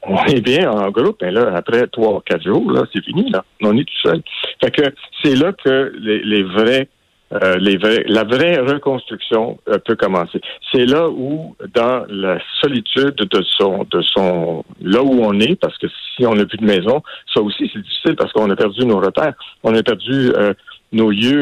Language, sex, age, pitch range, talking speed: French, male, 60-79, 100-135 Hz, 205 wpm